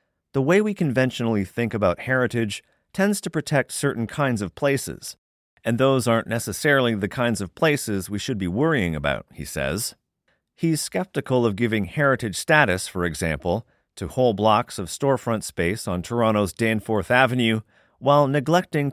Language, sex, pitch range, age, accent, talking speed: English, male, 105-135 Hz, 40-59, American, 155 wpm